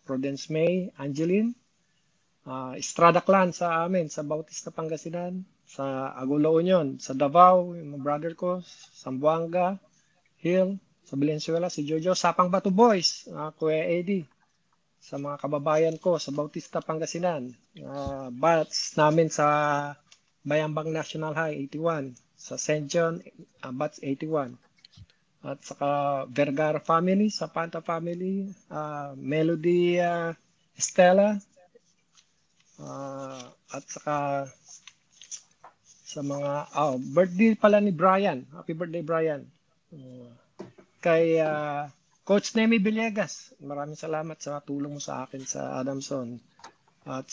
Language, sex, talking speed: English, male, 115 wpm